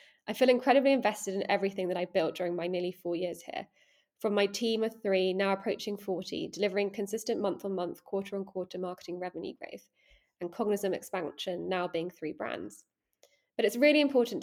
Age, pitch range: 20-39, 180-210 Hz